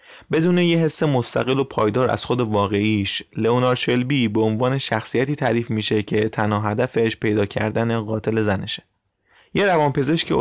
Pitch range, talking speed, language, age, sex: 105-130 Hz, 145 wpm, Persian, 20-39, male